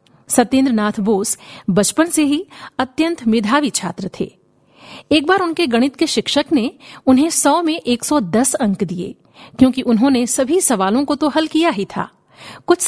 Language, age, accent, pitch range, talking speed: Hindi, 50-69, native, 210-290 Hz, 165 wpm